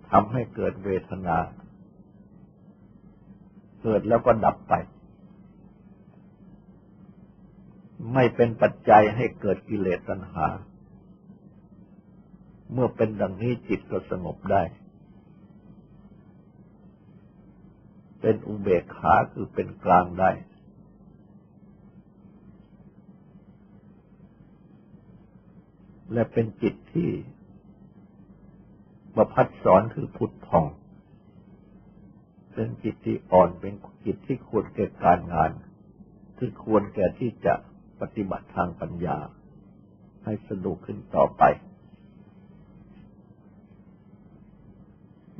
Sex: male